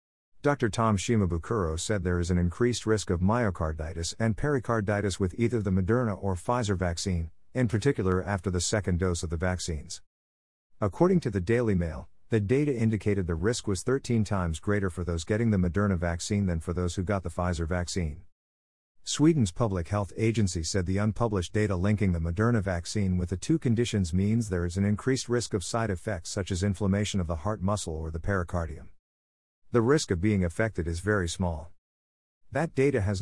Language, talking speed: English, 185 wpm